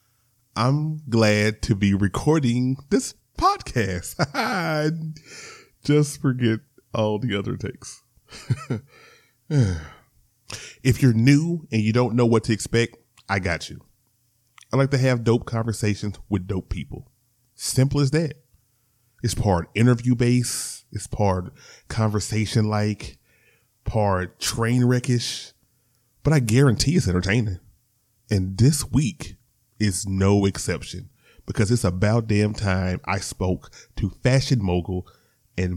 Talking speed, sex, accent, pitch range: 120 wpm, male, American, 95-125 Hz